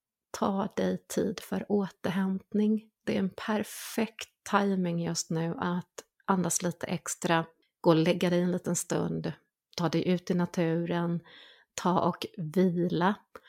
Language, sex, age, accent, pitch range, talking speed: Swedish, female, 30-49, native, 170-205 Hz, 140 wpm